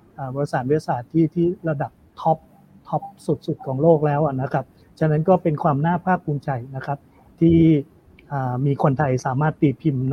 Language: Thai